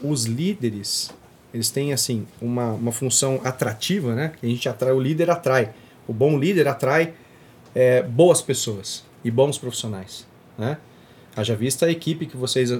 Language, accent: Portuguese, Brazilian